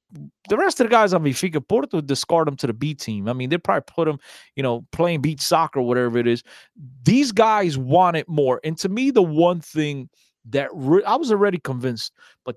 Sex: male